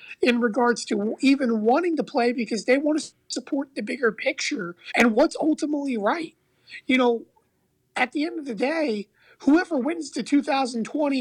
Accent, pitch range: American, 215-275 Hz